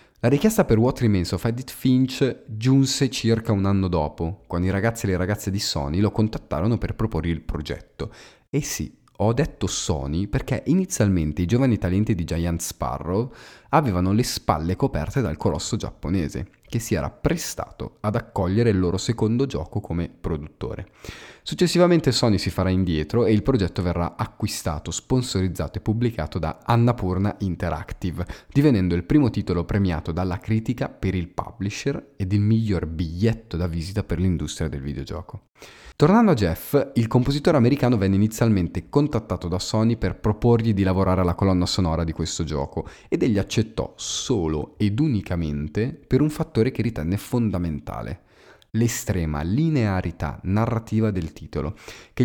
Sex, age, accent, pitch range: male, 30-49, native, 90-115 Hz